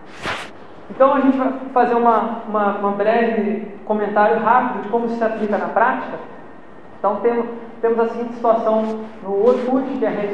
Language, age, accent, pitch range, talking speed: Portuguese, 20-39, Brazilian, 210-255 Hz, 165 wpm